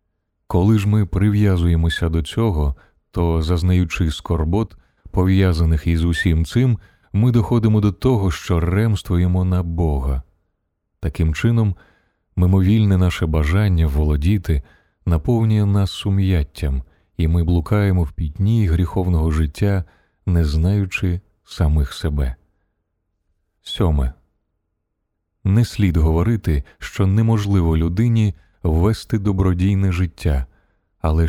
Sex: male